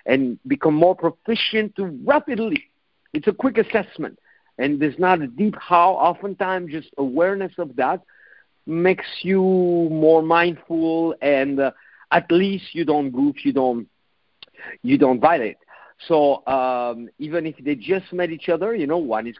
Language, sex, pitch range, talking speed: English, male, 135-190 Hz, 150 wpm